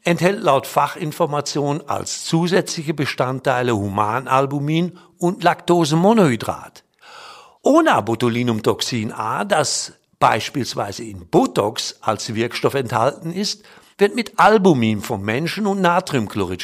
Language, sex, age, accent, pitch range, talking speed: German, male, 50-69, German, 125-180 Hz, 95 wpm